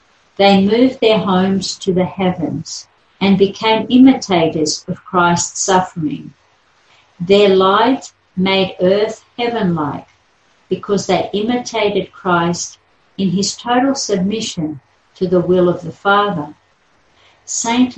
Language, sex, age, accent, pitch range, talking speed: English, female, 50-69, Australian, 175-215 Hz, 110 wpm